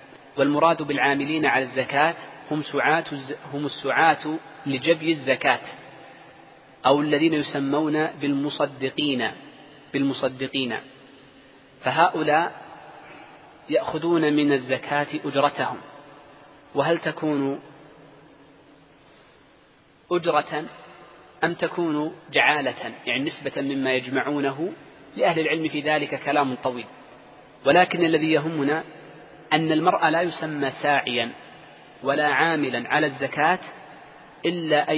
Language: Arabic